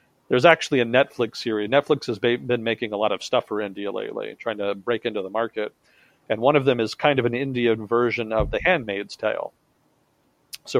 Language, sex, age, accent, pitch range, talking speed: English, male, 40-59, American, 105-125 Hz, 205 wpm